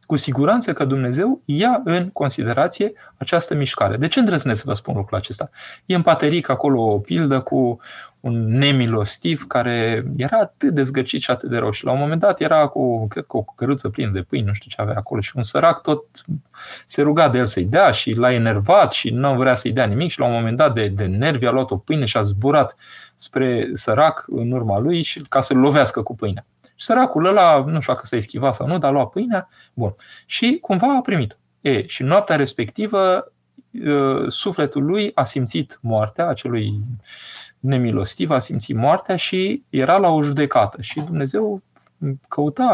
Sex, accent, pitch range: male, native, 120-165 Hz